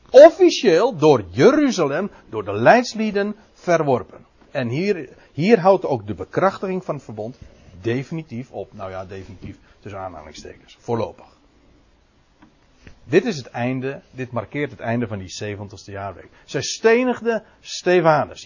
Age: 60-79